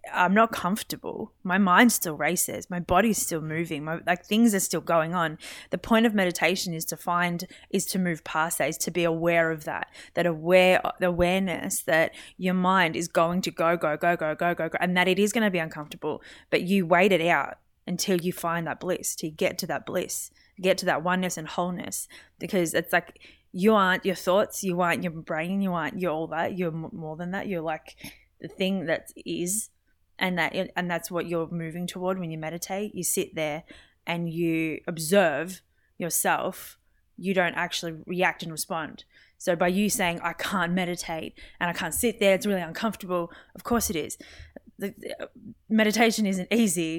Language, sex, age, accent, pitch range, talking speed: English, female, 20-39, Australian, 165-190 Hz, 200 wpm